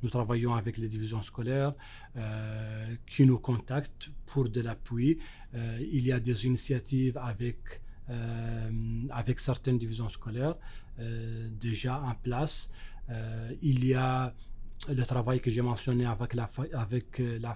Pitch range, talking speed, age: 115-130 Hz, 145 wpm, 40-59